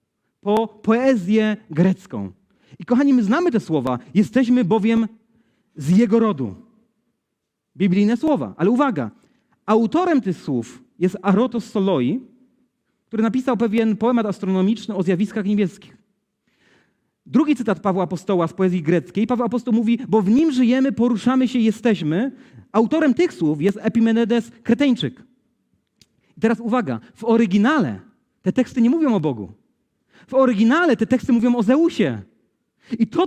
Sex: male